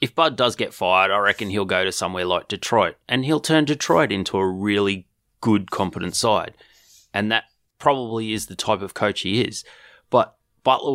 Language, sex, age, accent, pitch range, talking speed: English, male, 20-39, Australian, 100-120 Hz, 190 wpm